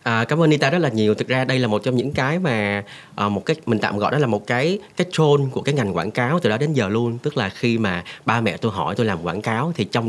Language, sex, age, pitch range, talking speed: Vietnamese, male, 30-49, 105-140 Hz, 310 wpm